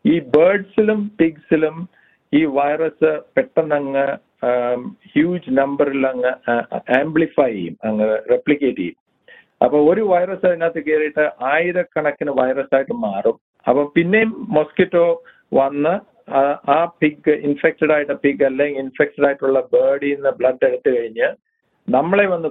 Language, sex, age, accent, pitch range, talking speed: Malayalam, male, 50-69, native, 140-175 Hz, 110 wpm